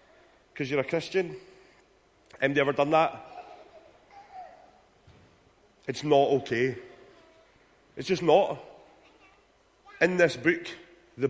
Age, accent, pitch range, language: 30-49, British, 125-165 Hz, German